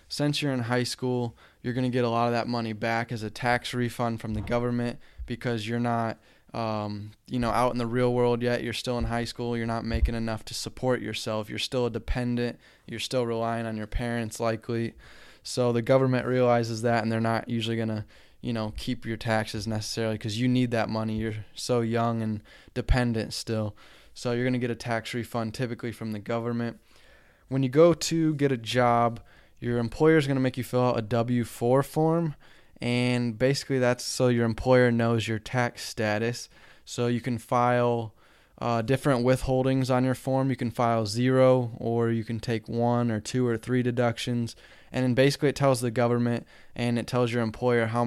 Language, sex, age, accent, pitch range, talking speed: English, male, 20-39, American, 115-125 Hz, 200 wpm